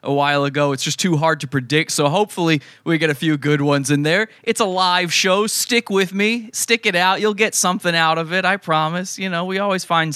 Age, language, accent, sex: 20-39, English, American, male